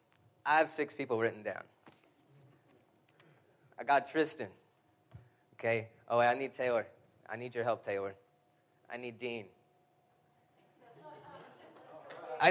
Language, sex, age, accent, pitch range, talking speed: English, male, 20-39, American, 125-160 Hz, 110 wpm